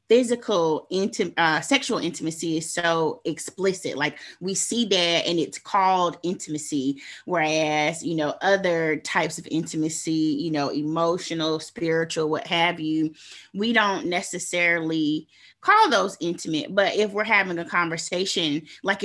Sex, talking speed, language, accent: female, 130 wpm, English, American